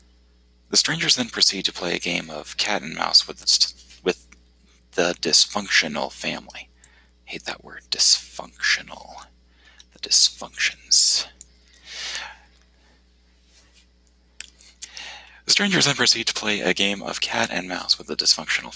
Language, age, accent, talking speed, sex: English, 30-49, American, 120 wpm, male